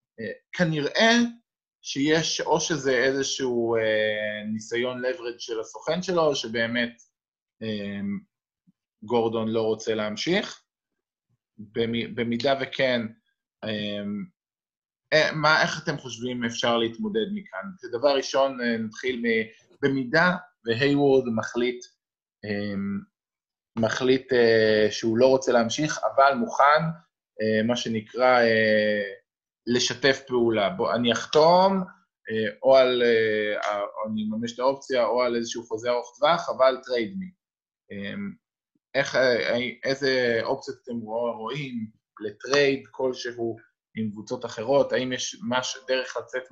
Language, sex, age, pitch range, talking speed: Hebrew, male, 20-39, 115-140 Hz, 110 wpm